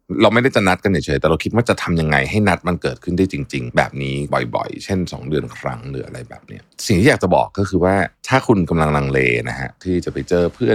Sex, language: male, Thai